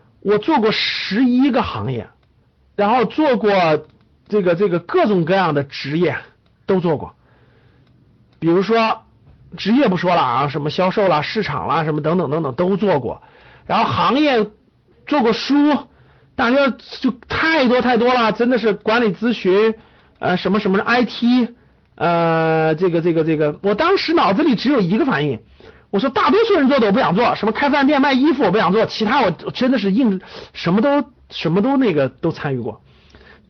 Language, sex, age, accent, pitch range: Chinese, male, 50-69, native, 170-265 Hz